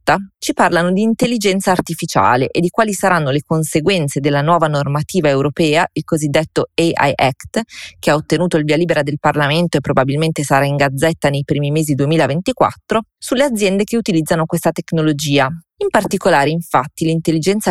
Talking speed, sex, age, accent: 155 wpm, female, 30-49, native